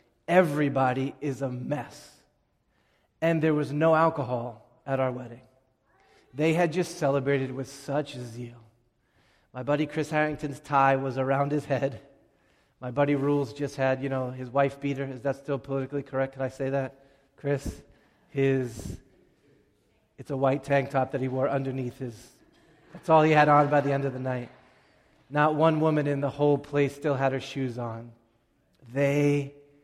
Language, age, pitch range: English, 30-49, 125-145 Hz